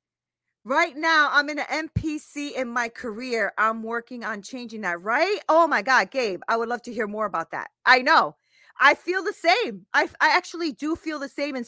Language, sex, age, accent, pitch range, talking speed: English, female, 40-59, American, 225-300 Hz, 210 wpm